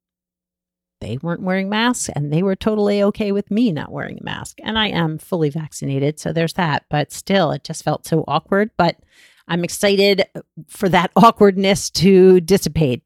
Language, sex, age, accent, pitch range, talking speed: English, female, 40-59, American, 145-185 Hz, 175 wpm